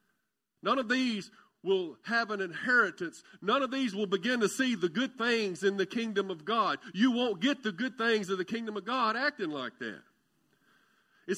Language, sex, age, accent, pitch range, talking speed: English, male, 50-69, American, 195-255 Hz, 195 wpm